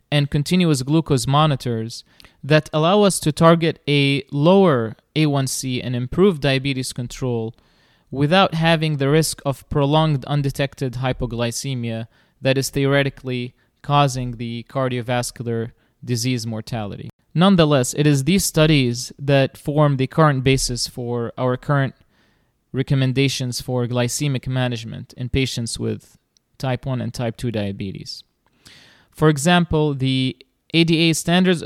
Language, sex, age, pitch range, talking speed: English, male, 30-49, 125-155 Hz, 120 wpm